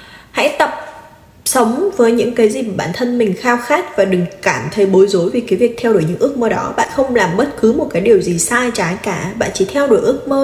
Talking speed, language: 265 wpm, Vietnamese